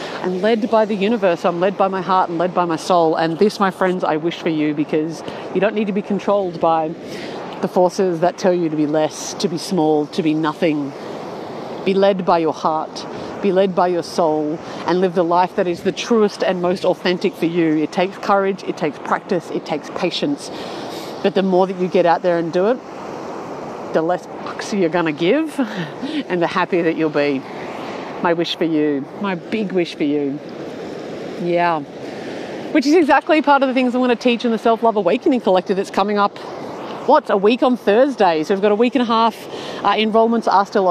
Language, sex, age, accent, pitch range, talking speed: English, female, 40-59, Australian, 175-230 Hz, 215 wpm